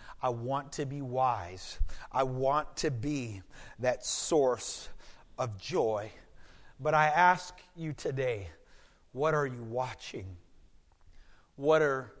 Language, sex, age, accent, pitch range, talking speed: English, male, 40-59, American, 125-155 Hz, 120 wpm